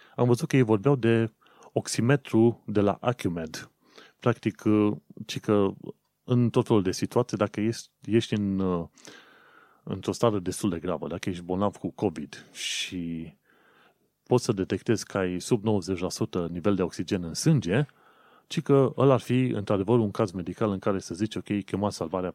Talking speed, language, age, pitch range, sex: 155 wpm, Romanian, 30-49, 95-120 Hz, male